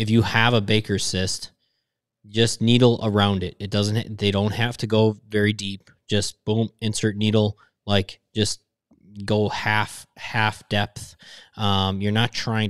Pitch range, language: 95-110 Hz, English